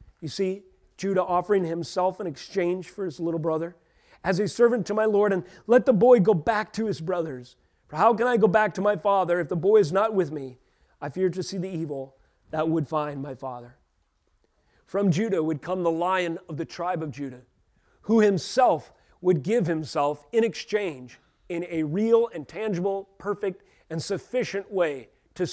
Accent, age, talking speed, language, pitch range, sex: American, 40-59, 190 wpm, English, 155-195 Hz, male